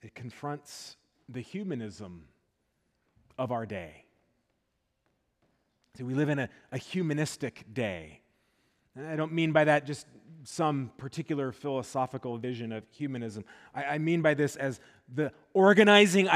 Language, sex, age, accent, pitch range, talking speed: English, male, 30-49, American, 135-180 Hz, 130 wpm